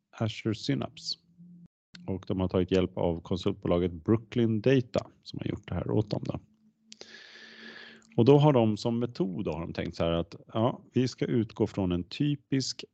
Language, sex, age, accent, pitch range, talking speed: Swedish, male, 40-59, Norwegian, 95-130 Hz, 175 wpm